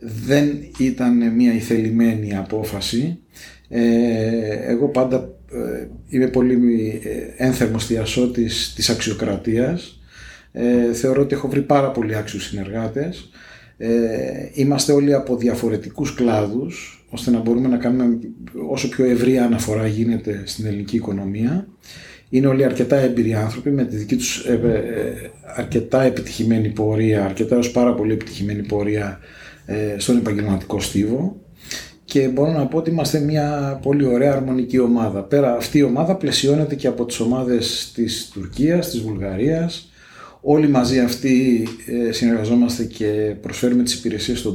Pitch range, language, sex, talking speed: 110-135 Hz, Greek, male, 125 wpm